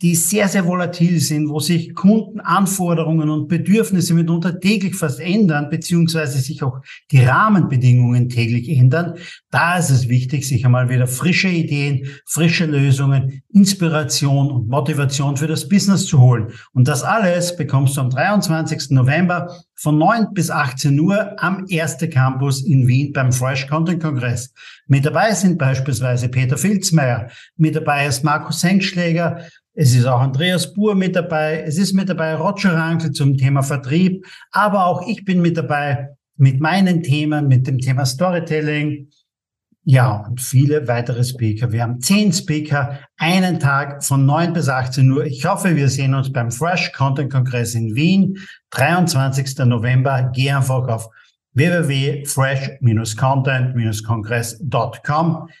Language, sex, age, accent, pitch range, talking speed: German, male, 50-69, German, 130-170 Hz, 145 wpm